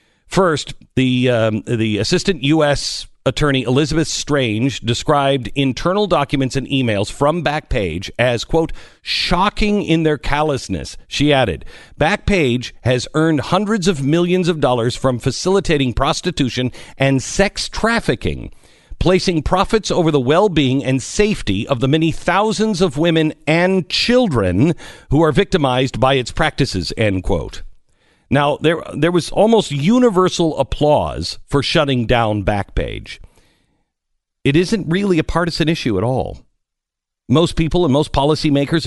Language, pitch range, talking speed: English, 120-165 Hz, 130 wpm